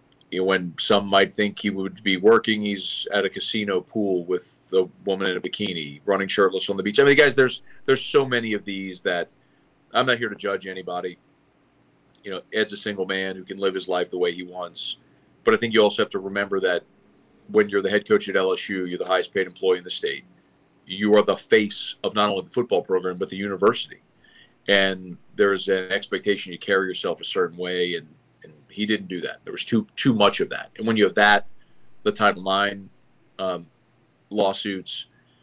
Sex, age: male, 40-59